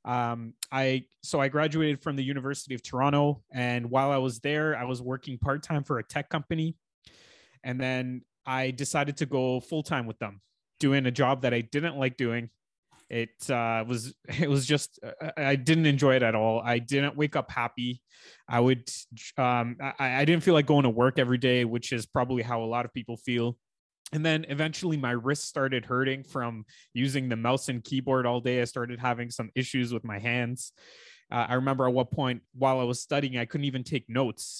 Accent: American